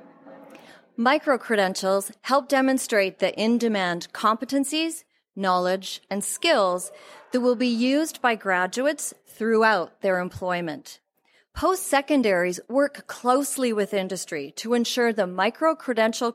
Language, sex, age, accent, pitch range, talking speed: English, female, 30-49, American, 195-270 Hz, 100 wpm